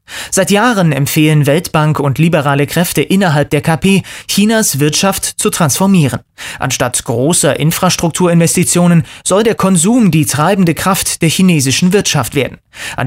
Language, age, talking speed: German, 30-49, 130 wpm